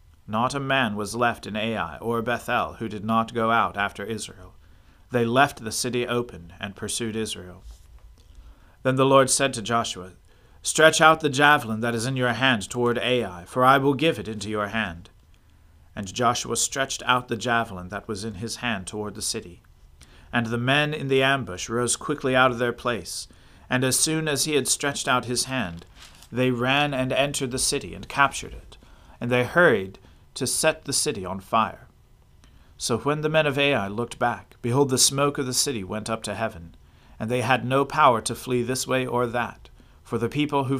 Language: English